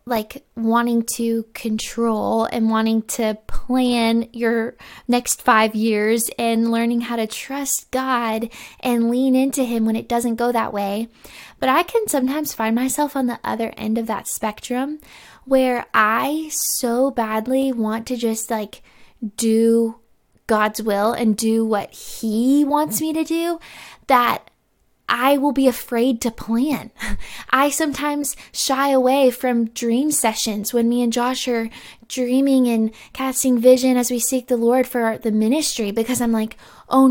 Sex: female